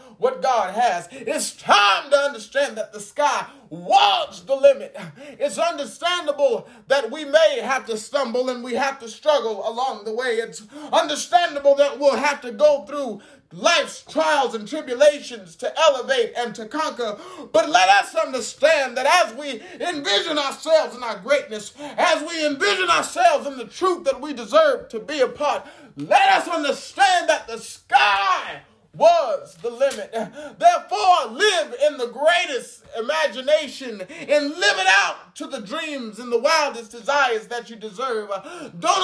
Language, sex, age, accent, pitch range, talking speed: English, male, 30-49, American, 245-320 Hz, 155 wpm